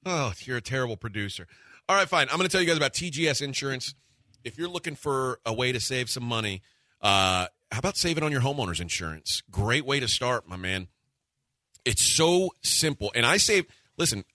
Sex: male